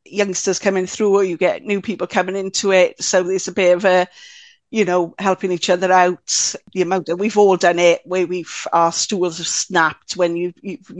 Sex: female